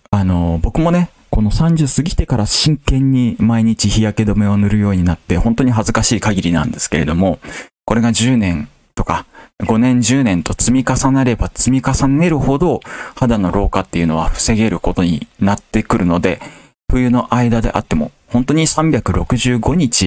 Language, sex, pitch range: Japanese, male, 90-125 Hz